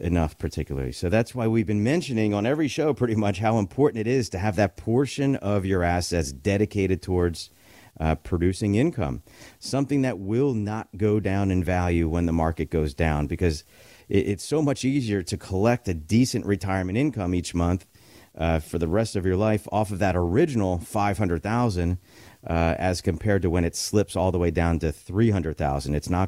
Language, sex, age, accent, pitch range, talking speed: English, male, 40-59, American, 85-115 Hz, 185 wpm